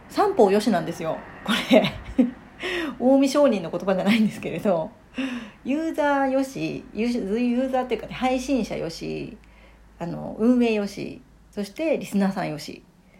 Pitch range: 185-255 Hz